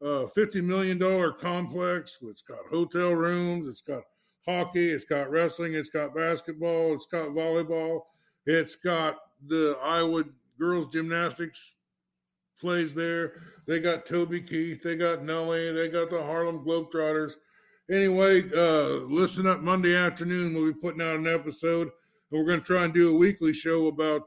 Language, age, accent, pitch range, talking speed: English, 60-79, American, 155-175 Hz, 155 wpm